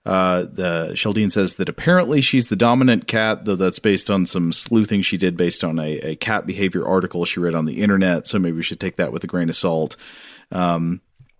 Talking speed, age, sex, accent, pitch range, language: 220 wpm, 40-59, male, American, 85-110 Hz, English